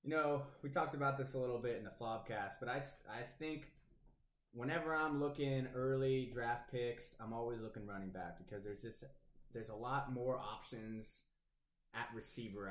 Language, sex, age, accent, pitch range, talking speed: English, male, 20-39, American, 105-130 Hz, 175 wpm